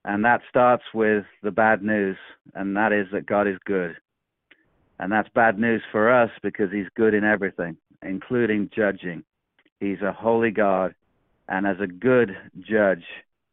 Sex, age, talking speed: male, 50-69, 160 wpm